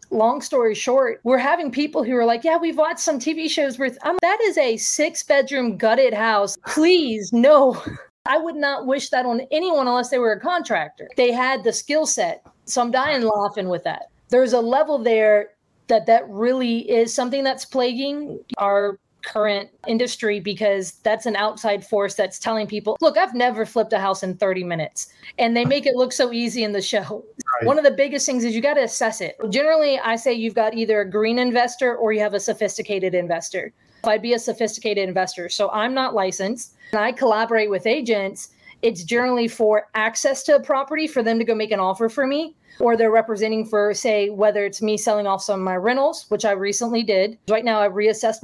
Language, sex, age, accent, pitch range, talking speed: English, female, 30-49, American, 210-265 Hz, 210 wpm